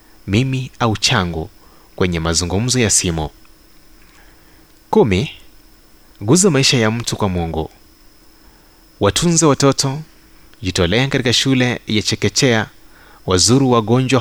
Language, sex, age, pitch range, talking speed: Swahili, male, 30-49, 100-130 Hz, 95 wpm